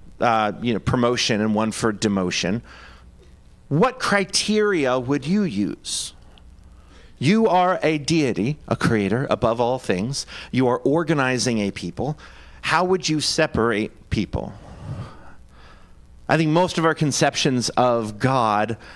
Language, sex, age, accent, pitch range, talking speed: English, male, 40-59, American, 110-145 Hz, 125 wpm